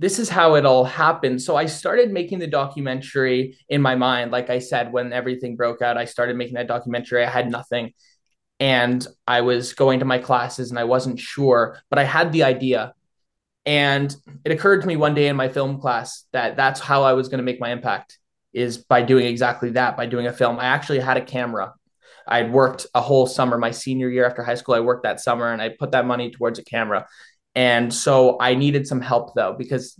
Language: English